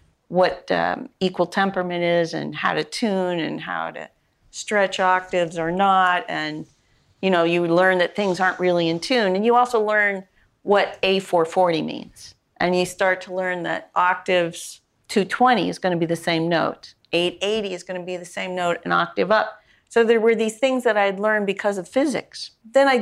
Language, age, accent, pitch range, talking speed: English, 50-69, American, 180-220 Hz, 195 wpm